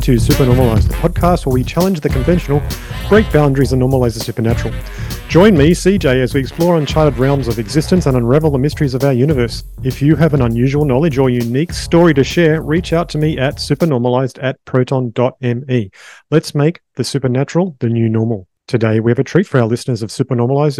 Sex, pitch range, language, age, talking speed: male, 125-150 Hz, English, 40-59, 195 wpm